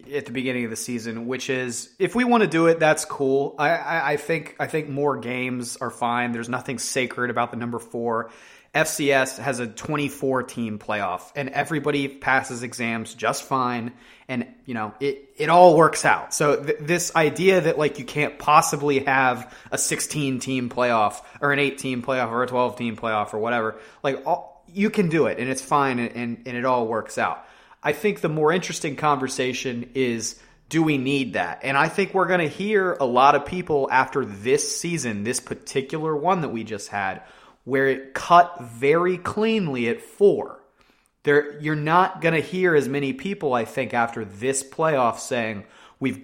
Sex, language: male, English